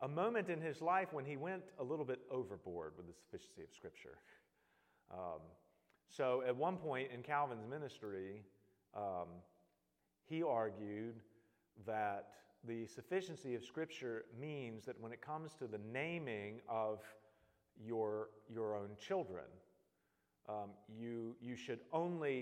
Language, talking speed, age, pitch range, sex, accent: English, 135 wpm, 40-59, 110-160 Hz, male, American